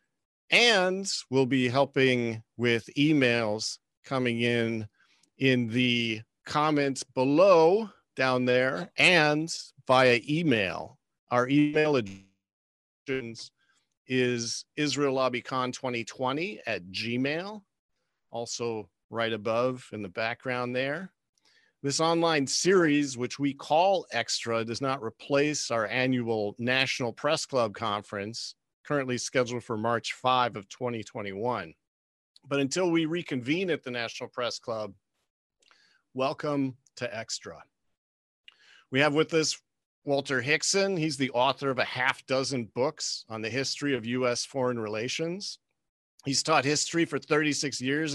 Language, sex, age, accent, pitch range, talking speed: English, male, 50-69, American, 115-145 Hz, 115 wpm